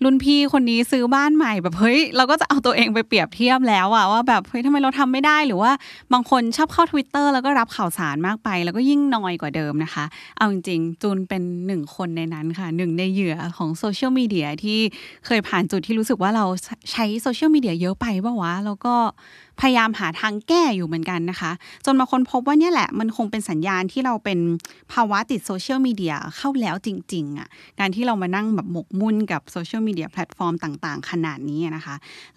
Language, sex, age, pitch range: Thai, female, 20-39, 180-265 Hz